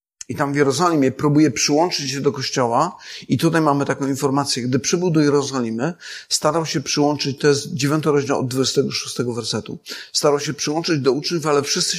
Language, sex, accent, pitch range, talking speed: Polish, male, native, 125-155 Hz, 175 wpm